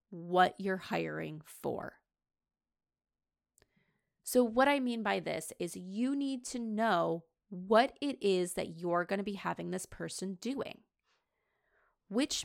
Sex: female